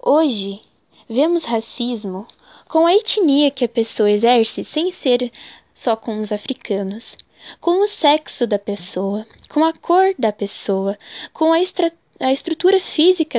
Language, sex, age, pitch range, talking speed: Portuguese, female, 10-29, 220-320 Hz, 140 wpm